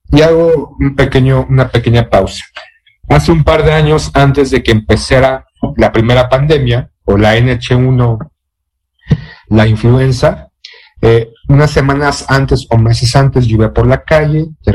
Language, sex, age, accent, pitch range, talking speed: Spanish, male, 50-69, Mexican, 115-150 Hz, 150 wpm